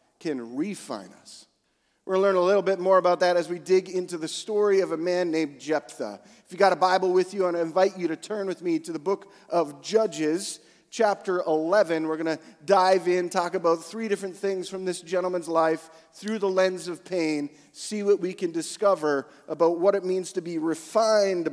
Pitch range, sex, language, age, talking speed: 160-195 Hz, male, English, 40-59, 215 wpm